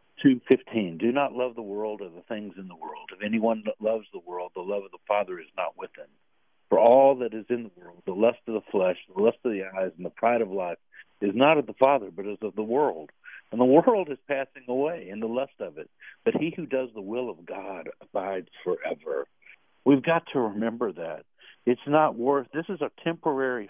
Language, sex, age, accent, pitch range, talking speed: English, male, 60-79, American, 110-145 Hz, 225 wpm